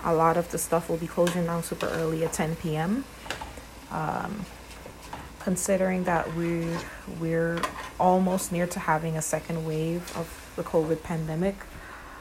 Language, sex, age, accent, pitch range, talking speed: English, female, 30-49, American, 165-190 Hz, 145 wpm